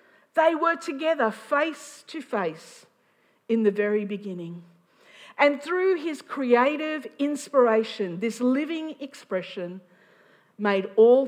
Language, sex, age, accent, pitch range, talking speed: English, female, 50-69, Australian, 185-260 Hz, 105 wpm